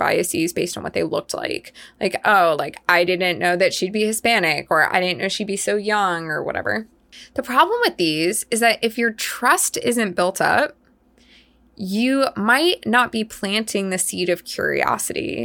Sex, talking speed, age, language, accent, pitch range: female, 185 wpm, 20-39, English, American, 185-245 Hz